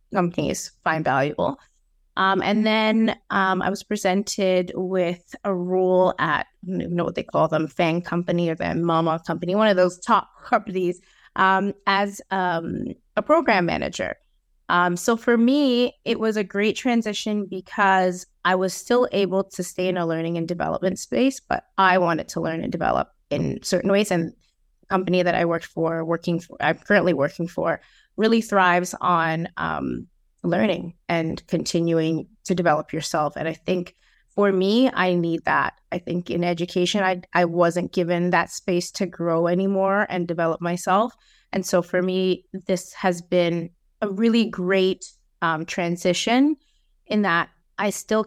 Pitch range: 170-200 Hz